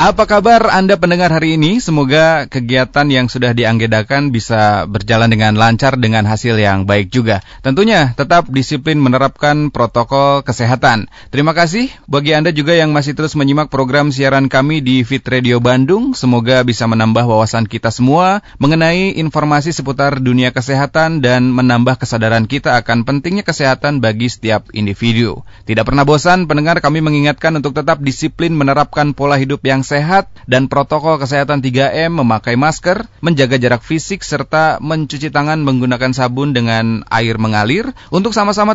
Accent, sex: native, male